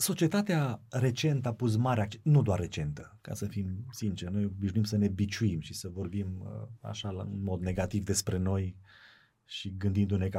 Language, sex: Romanian, male